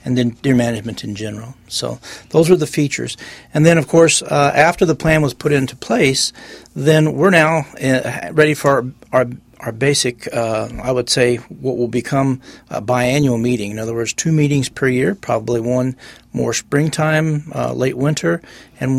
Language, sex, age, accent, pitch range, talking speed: English, male, 40-59, American, 120-145 Hz, 175 wpm